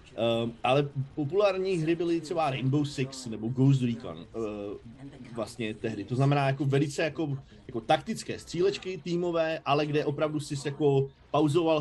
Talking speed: 145 wpm